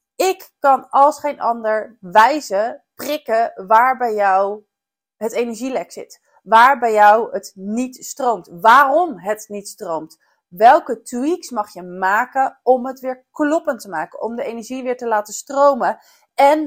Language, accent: Dutch, Dutch